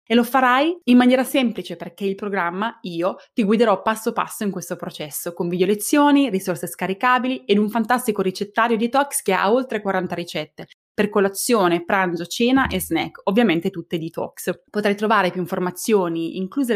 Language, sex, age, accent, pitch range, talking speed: Italian, female, 20-39, native, 180-230 Hz, 165 wpm